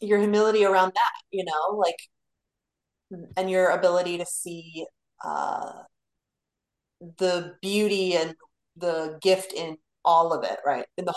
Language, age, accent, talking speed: English, 30-49, American, 135 wpm